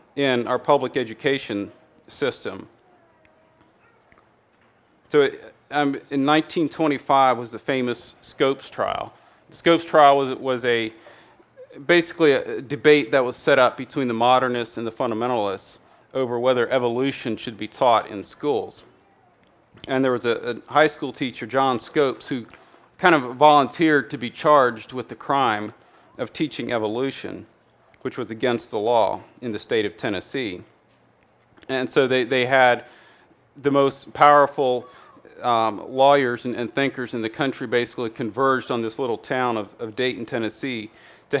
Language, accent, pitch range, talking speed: English, American, 120-145 Hz, 150 wpm